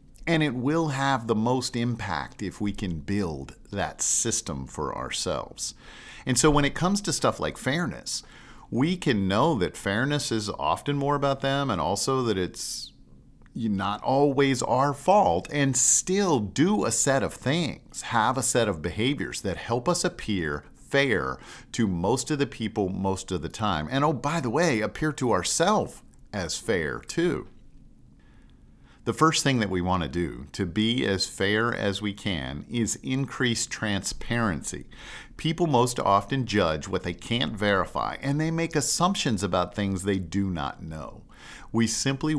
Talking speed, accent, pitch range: 165 wpm, American, 100-140 Hz